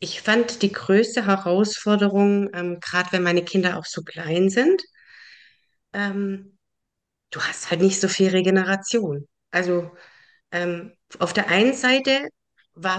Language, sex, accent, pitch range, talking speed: German, female, German, 180-215 Hz, 135 wpm